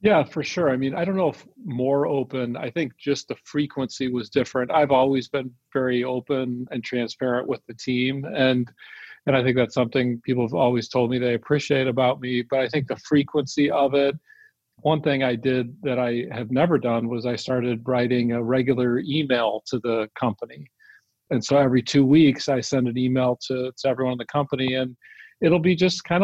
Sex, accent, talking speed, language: male, American, 205 wpm, English